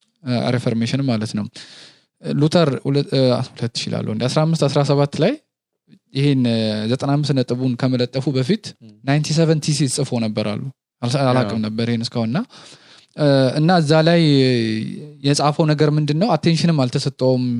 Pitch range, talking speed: 120-155 Hz, 75 wpm